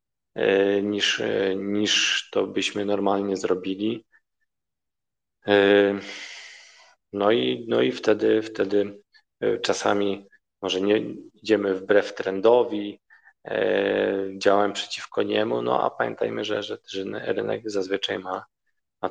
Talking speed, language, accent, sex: 95 wpm, Polish, native, male